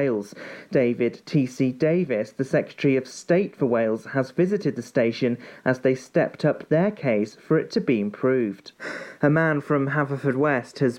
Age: 40-59